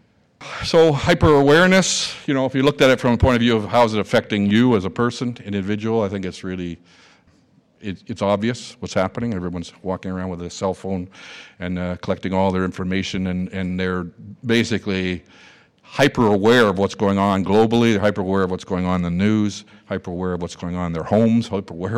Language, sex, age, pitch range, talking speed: English, male, 50-69, 90-110 Hz, 200 wpm